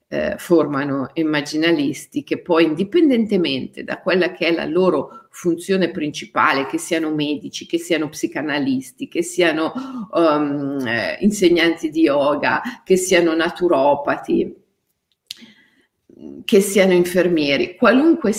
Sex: female